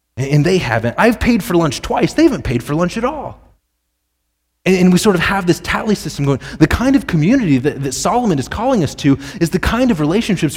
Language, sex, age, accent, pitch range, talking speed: English, male, 30-49, American, 105-165 Hz, 220 wpm